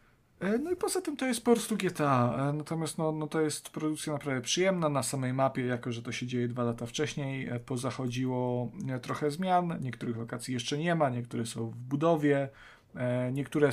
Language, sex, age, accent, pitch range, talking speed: Polish, male, 40-59, native, 125-155 Hz, 170 wpm